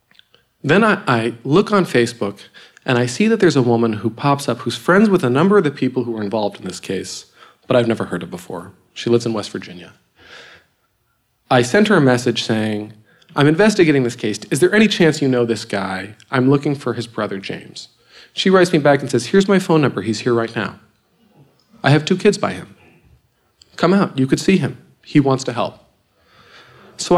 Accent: American